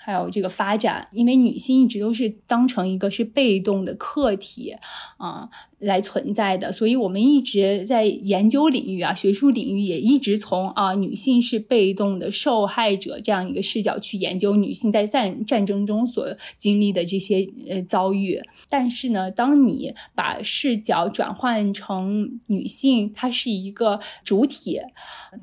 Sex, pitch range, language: female, 195-240 Hz, Chinese